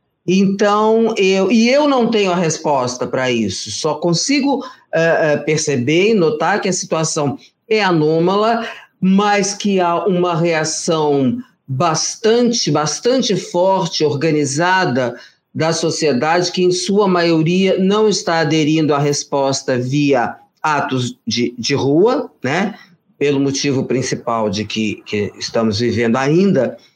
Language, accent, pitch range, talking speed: Portuguese, Brazilian, 140-205 Hz, 120 wpm